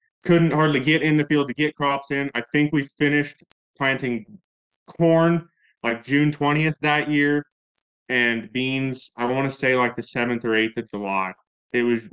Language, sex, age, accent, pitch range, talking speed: English, male, 20-39, American, 110-140 Hz, 180 wpm